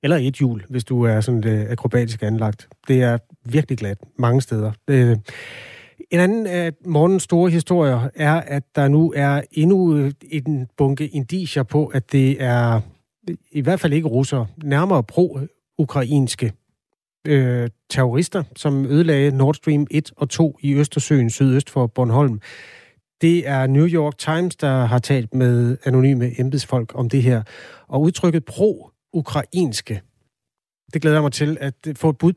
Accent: native